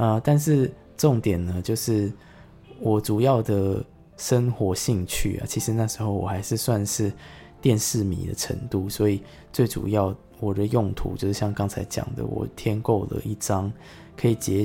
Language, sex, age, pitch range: Chinese, male, 20-39, 100-115 Hz